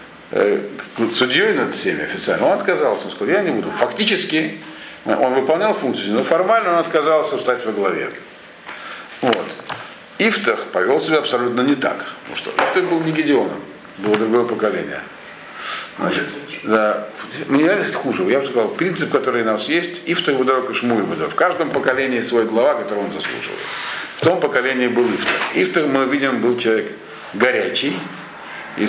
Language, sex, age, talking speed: Russian, male, 50-69, 150 wpm